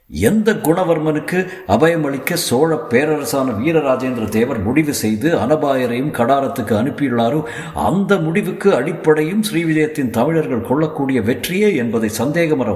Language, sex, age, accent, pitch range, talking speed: Tamil, male, 50-69, native, 100-155 Hz, 105 wpm